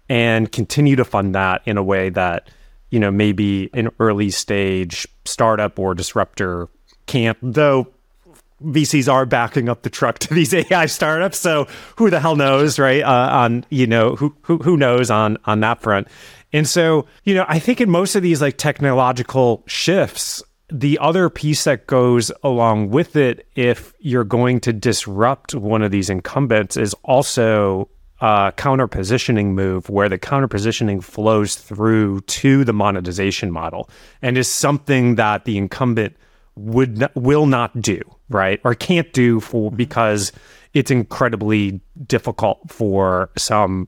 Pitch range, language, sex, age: 105-140 Hz, English, male, 30-49